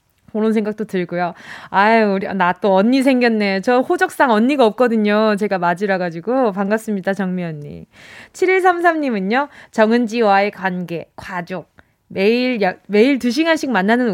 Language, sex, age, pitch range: Korean, female, 20-39, 190-270 Hz